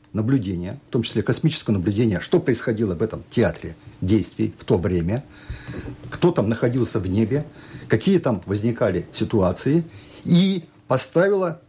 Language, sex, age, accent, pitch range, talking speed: Russian, male, 50-69, native, 110-165 Hz, 135 wpm